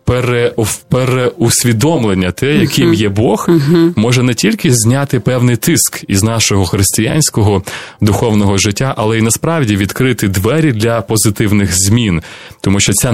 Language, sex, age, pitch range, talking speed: Ukrainian, male, 20-39, 105-125 Hz, 125 wpm